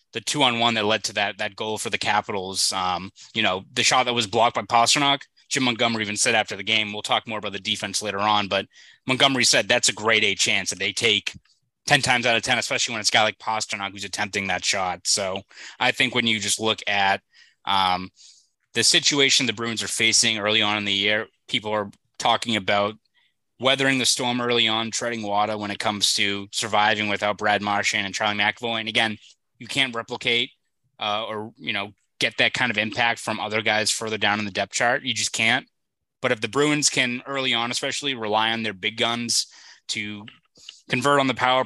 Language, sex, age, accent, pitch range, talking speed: English, male, 20-39, American, 105-125 Hz, 215 wpm